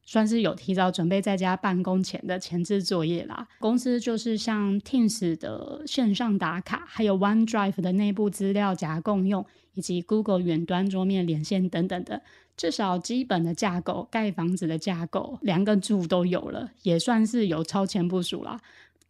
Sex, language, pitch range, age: female, Chinese, 180-225 Hz, 20-39